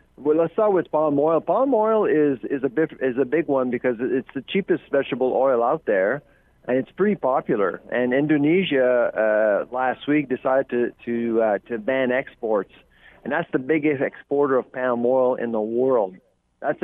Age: 40-59